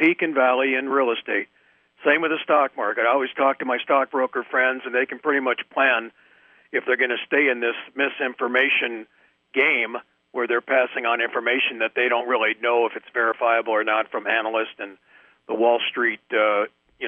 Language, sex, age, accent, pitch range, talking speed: English, male, 50-69, American, 115-150 Hz, 195 wpm